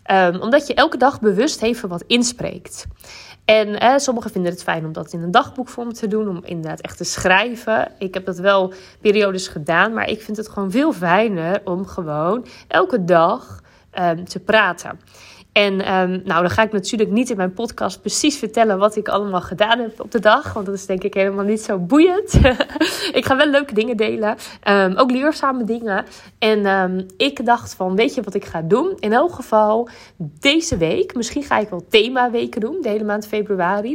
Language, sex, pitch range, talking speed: Dutch, female, 185-240 Hz, 195 wpm